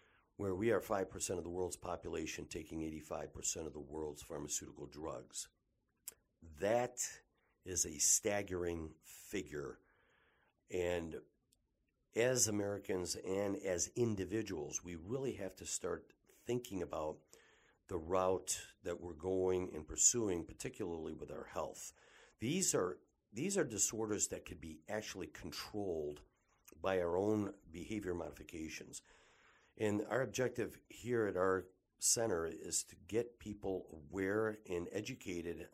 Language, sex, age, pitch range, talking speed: English, male, 60-79, 85-105 Hz, 130 wpm